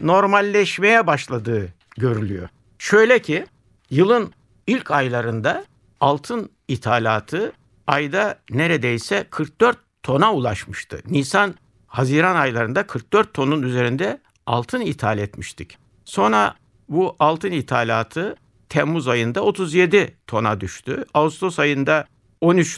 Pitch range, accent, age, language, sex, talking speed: 110-155 Hz, native, 60-79, Turkish, male, 90 wpm